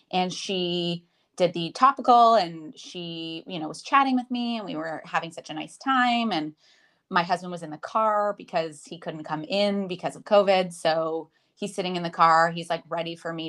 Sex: female